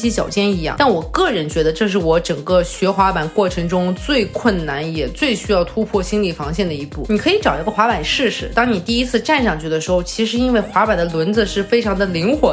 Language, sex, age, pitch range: Chinese, female, 20-39, 175-235 Hz